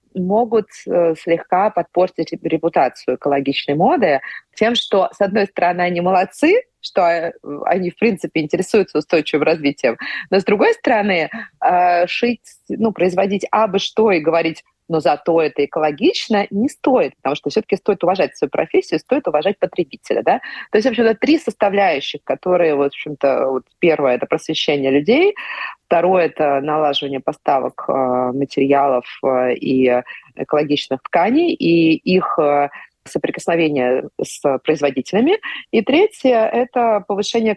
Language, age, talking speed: Russian, 30-49, 135 wpm